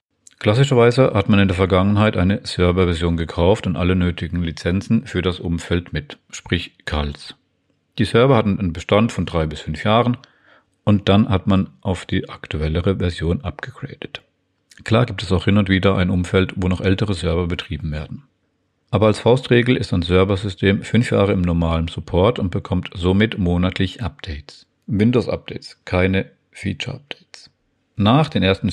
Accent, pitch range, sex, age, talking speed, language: German, 90-110 Hz, male, 50-69, 155 wpm, German